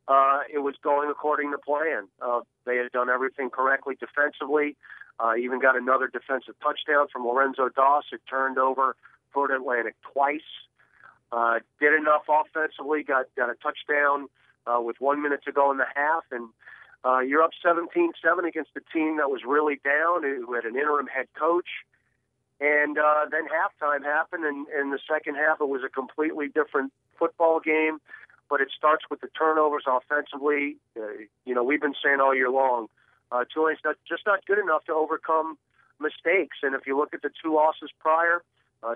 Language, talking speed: English, 180 wpm